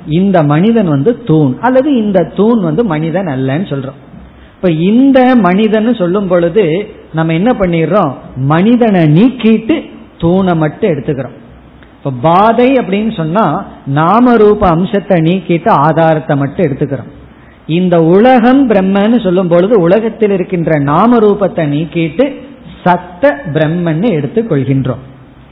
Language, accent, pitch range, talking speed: Tamil, native, 155-220 Hz, 100 wpm